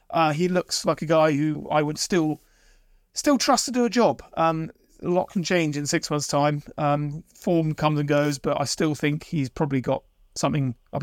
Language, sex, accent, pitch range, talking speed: English, male, British, 145-170 Hz, 210 wpm